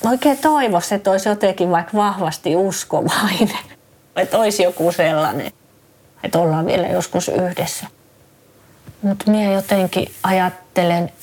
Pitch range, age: 170-195 Hz, 30-49